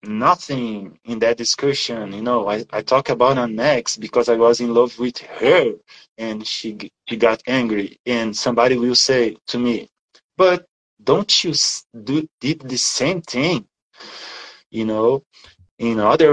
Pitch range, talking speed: 110-145 Hz, 155 wpm